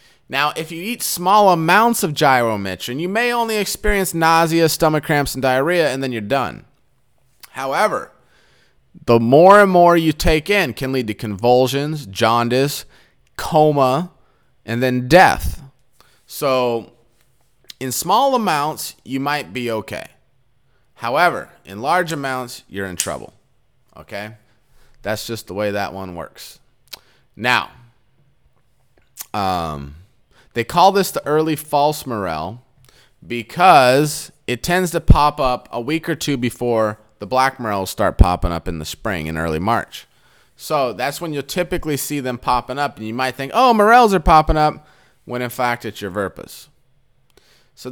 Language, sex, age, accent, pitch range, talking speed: English, male, 30-49, American, 120-160 Hz, 150 wpm